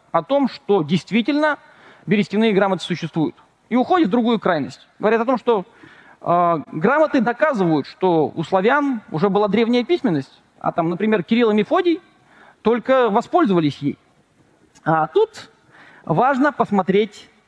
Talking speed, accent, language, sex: 135 wpm, native, Russian, male